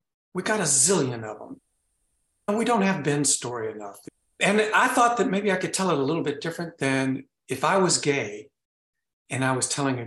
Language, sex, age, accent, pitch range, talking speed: English, male, 50-69, American, 125-150 Hz, 215 wpm